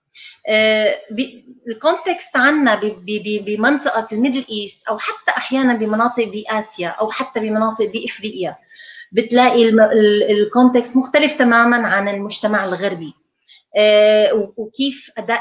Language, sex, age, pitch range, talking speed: Arabic, female, 30-49, 205-255 Hz, 95 wpm